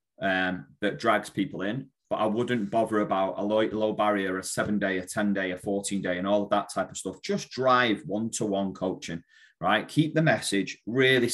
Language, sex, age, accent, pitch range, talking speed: English, male, 30-49, British, 95-110 Hz, 215 wpm